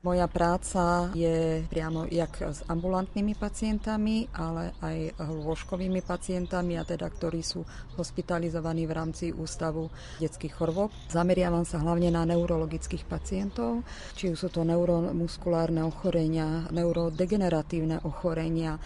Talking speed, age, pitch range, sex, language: 110 wpm, 30-49, 170-190 Hz, female, Slovak